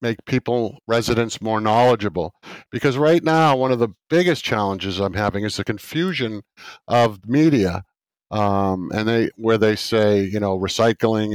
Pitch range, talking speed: 110-145 Hz, 155 wpm